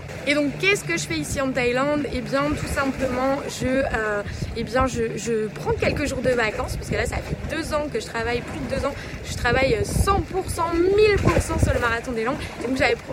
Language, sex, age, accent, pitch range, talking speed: French, female, 20-39, French, 230-290 Hz, 230 wpm